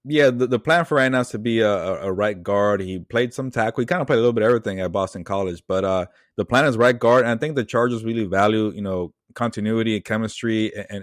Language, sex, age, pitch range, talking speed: English, male, 20-39, 100-120 Hz, 275 wpm